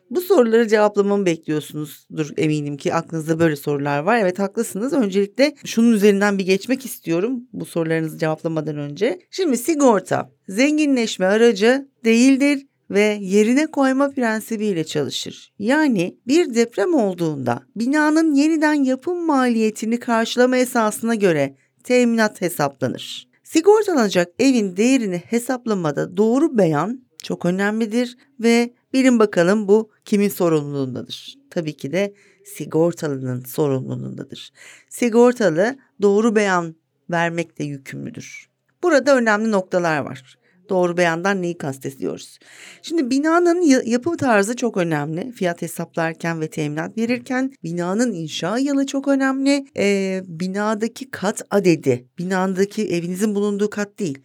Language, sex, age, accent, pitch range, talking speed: Turkish, female, 40-59, native, 165-250 Hz, 115 wpm